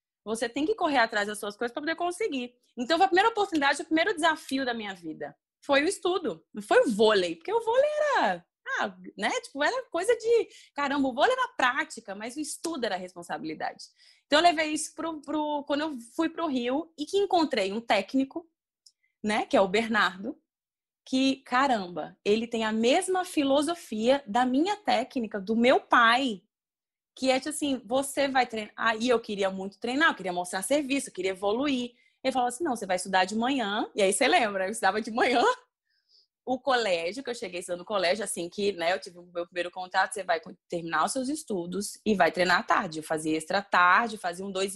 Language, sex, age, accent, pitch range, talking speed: Portuguese, female, 20-39, Brazilian, 190-300 Hz, 205 wpm